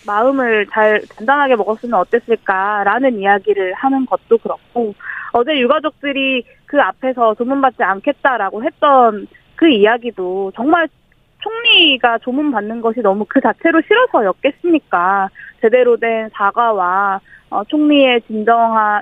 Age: 20-39